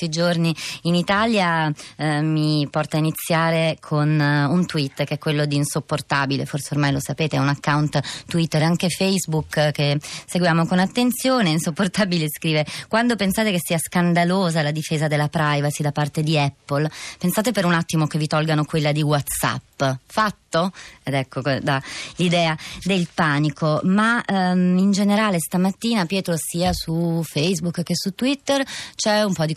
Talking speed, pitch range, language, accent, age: 160 wpm, 150-185 Hz, Italian, native, 20-39